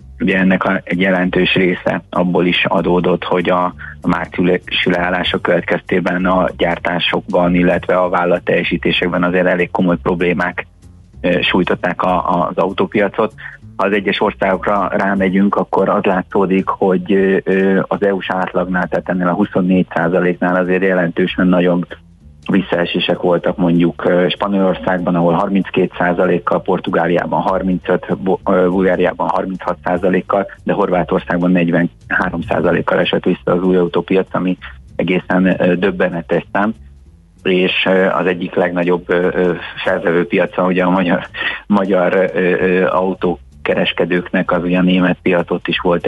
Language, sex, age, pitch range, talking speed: Hungarian, male, 30-49, 90-95 Hz, 110 wpm